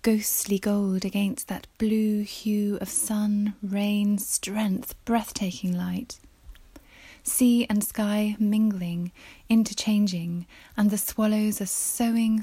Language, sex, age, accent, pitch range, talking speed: English, female, 20-39, British, 195-220 Hz, 105 wpm